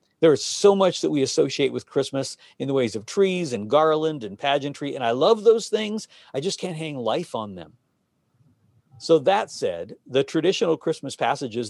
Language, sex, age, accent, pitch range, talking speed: English, male, 50-69, American, 125-180 Hz, 190 wpm